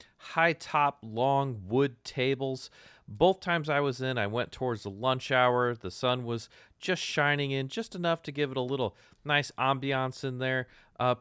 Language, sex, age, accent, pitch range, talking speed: English, male, 30-49, American, 95-135 Hz, 180 wpm